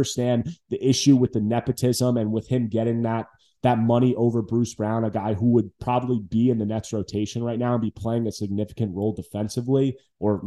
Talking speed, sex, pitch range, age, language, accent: 210 wpm, male, 115-135 Hz, 20-39, English, American